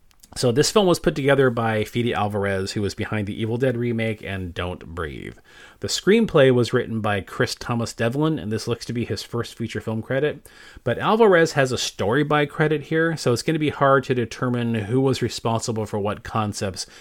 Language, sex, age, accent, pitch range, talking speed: English, male, 30-49, American, 105-130 Hz, 210 wpm